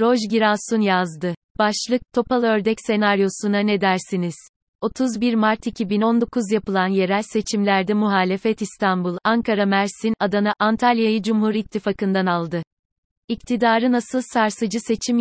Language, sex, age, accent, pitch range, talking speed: Turkish, female, 30-49, native, 190-225 Hz, 110 wpm